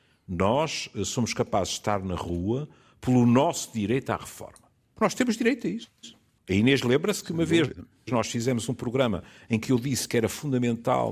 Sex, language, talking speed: male, Portuguese, 185 wpm